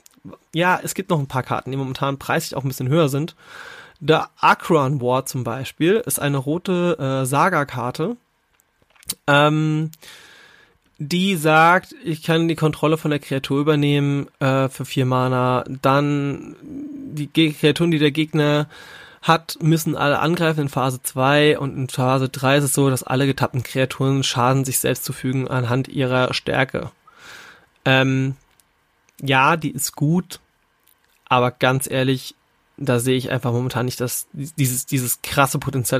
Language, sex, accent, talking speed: German, male, German, 155 wpm